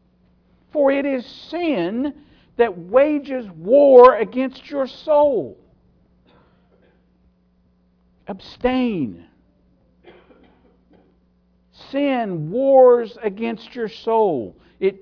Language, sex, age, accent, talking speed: English, male, 60-79, American, 70 wpm